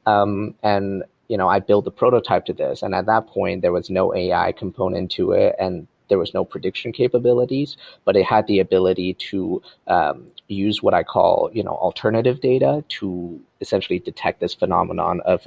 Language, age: English, 30-49